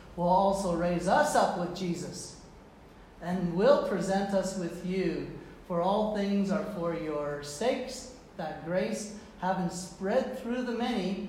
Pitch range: 175-205 Hz